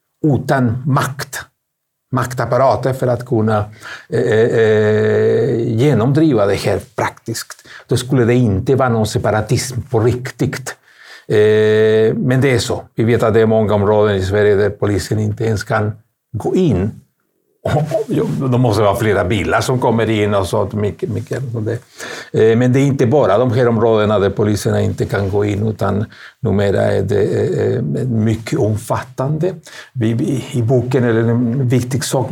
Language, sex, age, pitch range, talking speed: Swedish, male, 60-79, 110-135 Hz, 140 wpm